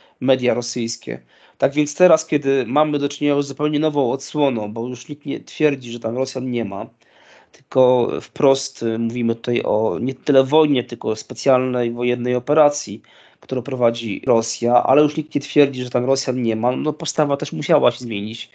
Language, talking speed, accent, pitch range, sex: Polish, 175 wpm, native, 120-145 Hz, male